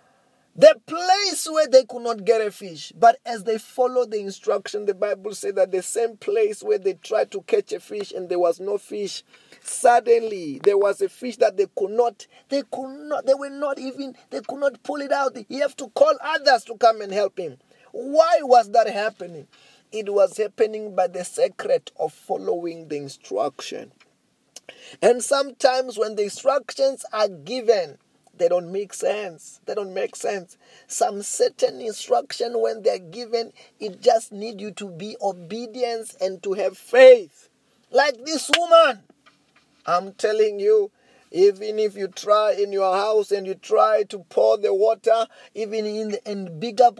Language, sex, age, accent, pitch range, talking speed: English, male, 30-49, South African, 200-280 Hz, 175 wpm